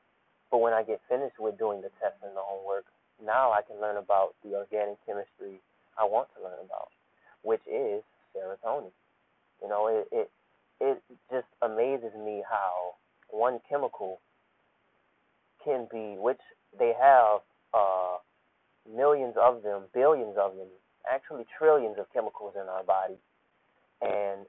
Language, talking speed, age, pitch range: English, 145 wpm, 20-39, 100-125 Hz